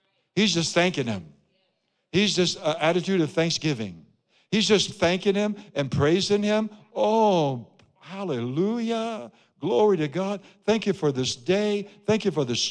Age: 60-79